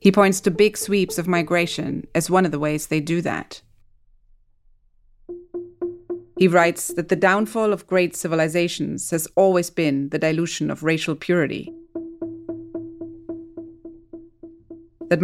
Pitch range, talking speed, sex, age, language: 155-195 Hz, 125 wpm, female, 30-49, English